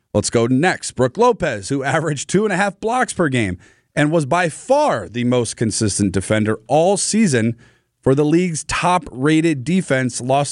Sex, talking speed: male, 170 wpm